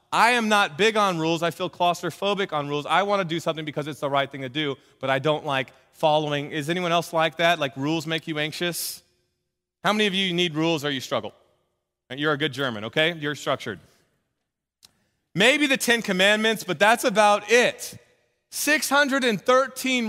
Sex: male